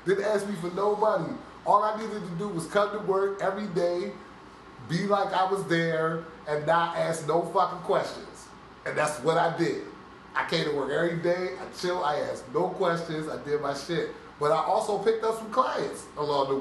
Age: 30-49